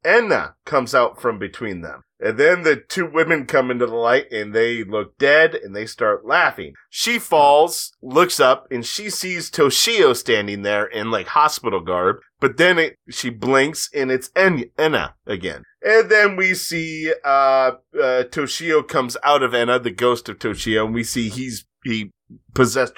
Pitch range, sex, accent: 120-155 Hz, male, American